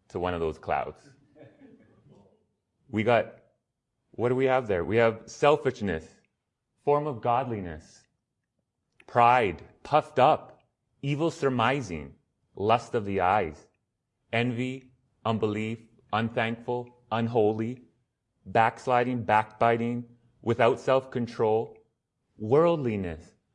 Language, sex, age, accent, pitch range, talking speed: English, male, 30-49, American, 100-120 Hz, 95 wpm